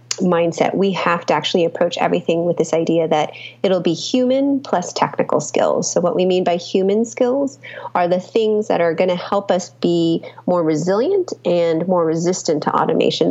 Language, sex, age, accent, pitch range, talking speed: English, female, 30-49, American, 165-210 Hz, 185 wpm